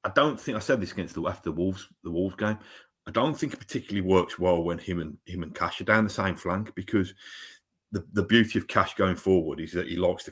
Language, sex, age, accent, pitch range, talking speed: English, male, 30-49, British, 95-130 Hz, 260 wpm